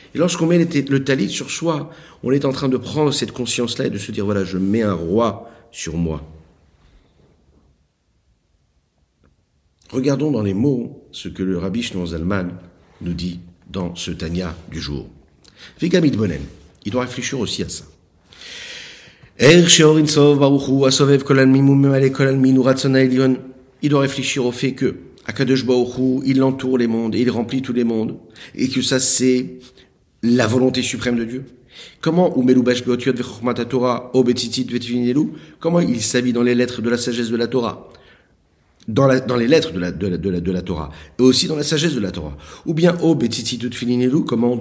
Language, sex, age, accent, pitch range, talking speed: French, male, 50-69, French, 95-130 Hz, 150 wpm